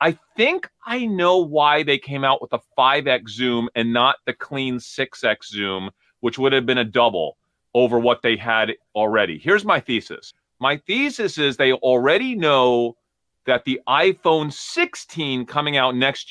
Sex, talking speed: male, 165 wpm